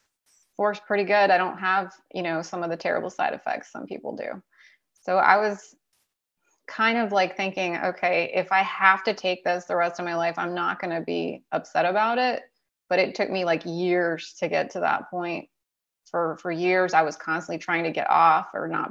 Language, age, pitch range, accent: English, 20-39, 170-200 Hz, American